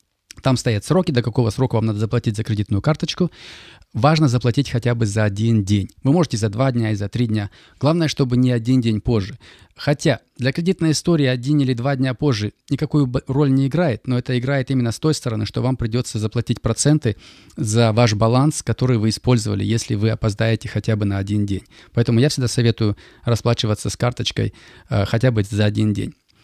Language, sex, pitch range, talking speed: Russian, male, 115-145 Hz, 195 wpm